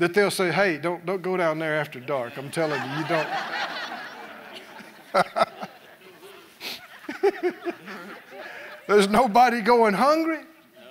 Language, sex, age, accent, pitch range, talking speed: English, male, 50-69, American, 185-285 Hz, 110 wpm